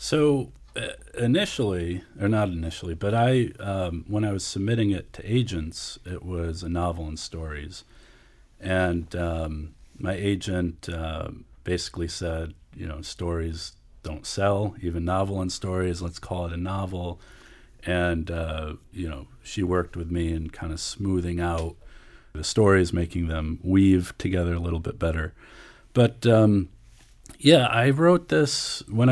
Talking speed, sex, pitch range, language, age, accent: 150 wpm, male, 85-105 Hz, English, 40-59, American